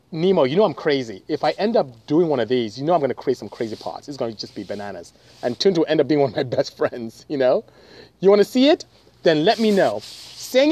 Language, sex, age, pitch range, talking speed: English, male, 30-49, 125-205 Hz, 285 wpm